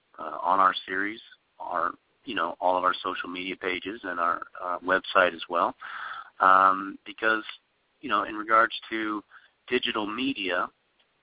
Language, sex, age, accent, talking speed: English, male, 40-59, American, 145 wpm